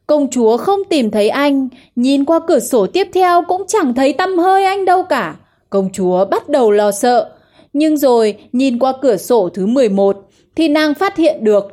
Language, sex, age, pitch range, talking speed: Vietnamese, female, 20-39, 215-315 Hz, 200 wpm